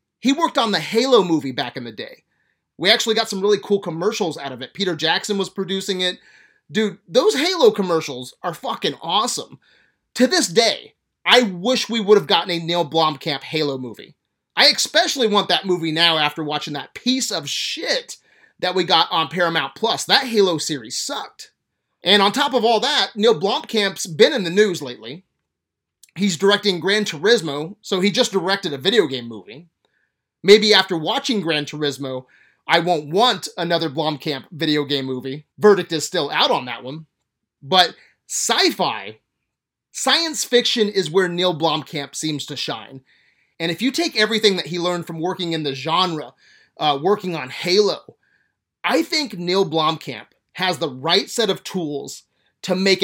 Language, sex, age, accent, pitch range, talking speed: English, male, 30-49, American, 150-210 Hz, 170 wpm